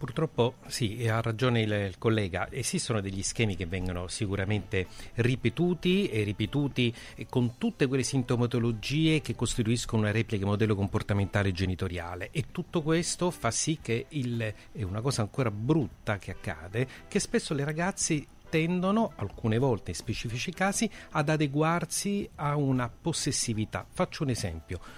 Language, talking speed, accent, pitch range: Italian, 140 wpm, native, 110-160 Hz